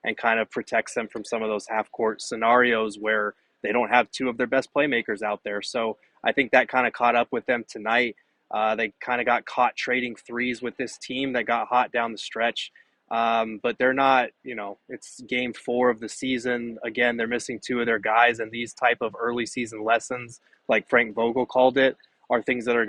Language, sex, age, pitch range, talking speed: English, male, 20-39, 115-130 Hz, 225 wpm